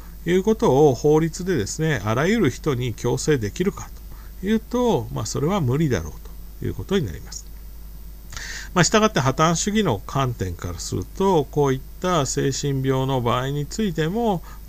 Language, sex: Japanese, male